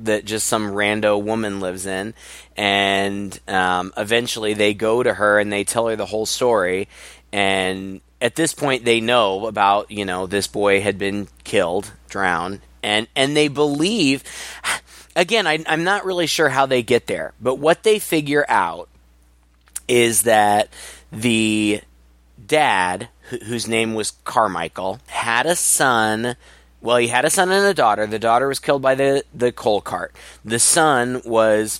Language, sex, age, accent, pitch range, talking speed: English, male, 20-39, American, 100-130 Hz, 165 wpm